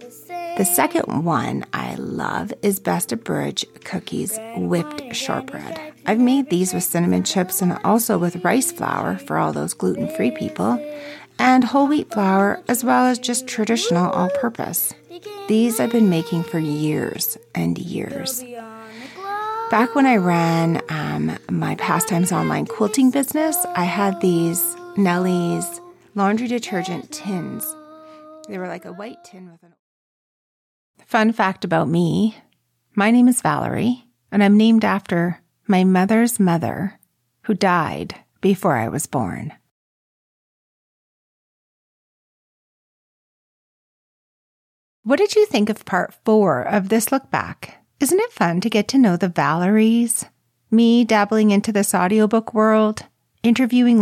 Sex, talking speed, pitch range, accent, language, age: female, 130 wpm, 180-245 Hz, American, English, 40-59